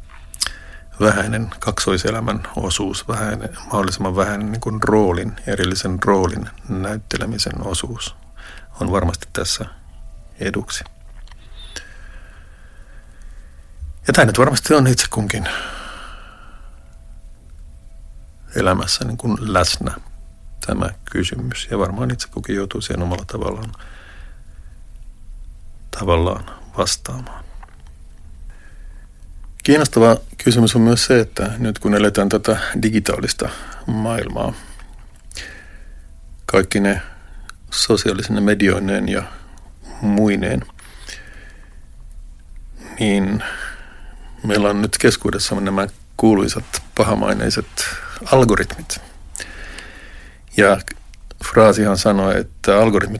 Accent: native